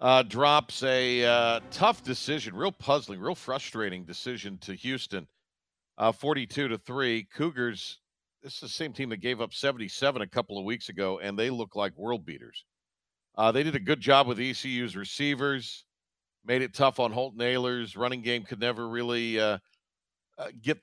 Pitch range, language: 110-145 Hz, English